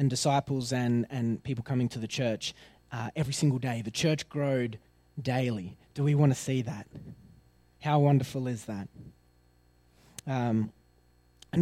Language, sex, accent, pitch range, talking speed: English, male, Australian, 125-175 Hz, 150 wpm